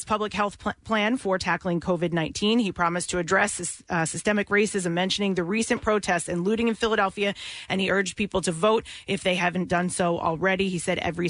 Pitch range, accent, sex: 185-215 Hz, American, female